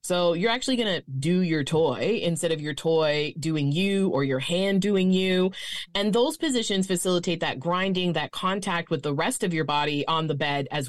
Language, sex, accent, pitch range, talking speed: English, female, American, 155-205 Hz, 205 wpm